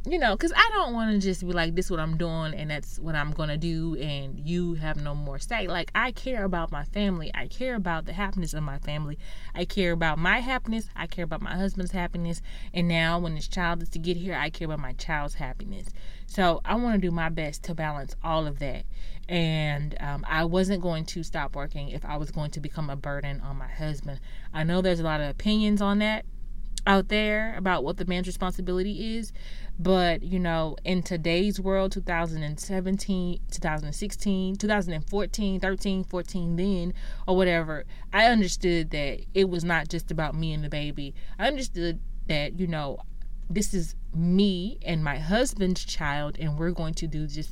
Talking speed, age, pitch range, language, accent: 200 wpm, 30-49, 155-190 Hz, English, American